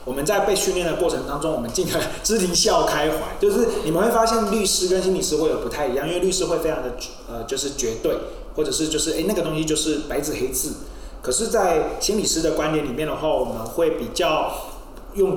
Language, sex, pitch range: Chinese, male, 140-185 Hz